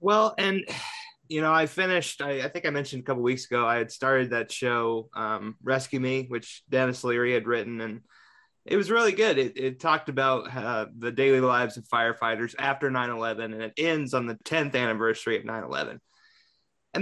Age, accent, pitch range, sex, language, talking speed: 20-39, American, 120-160 Hz, male, English, 195 wpm